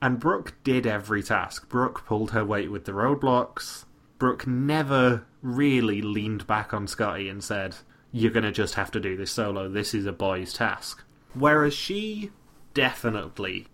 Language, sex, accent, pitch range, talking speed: English, male, British, 105-135 Hz, 165 wpm